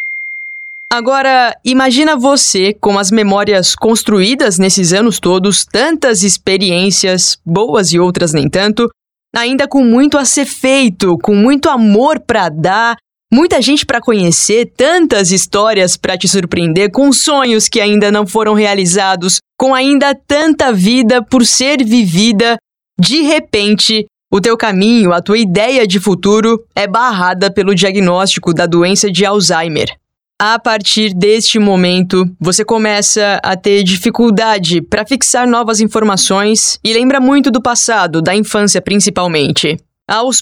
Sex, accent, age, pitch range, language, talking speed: female, Brazilian, 20-39, 190-235 Hz, Portuguese, 135 wpm